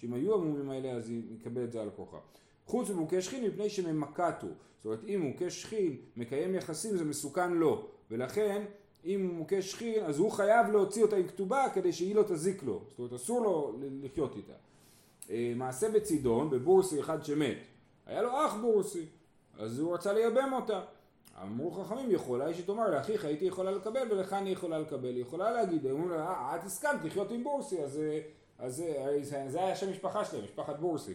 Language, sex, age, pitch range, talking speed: Hebrew, male, 30-49, 135-210 Hz, 170 wpm